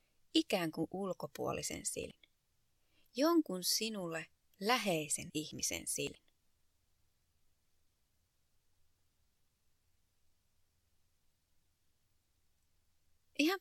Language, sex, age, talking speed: Finnish, female, 30-49, 45 wpm